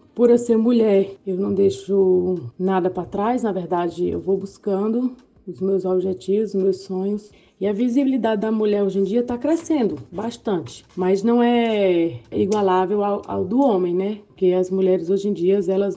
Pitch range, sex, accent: 175-200 Hz, female, Brazilian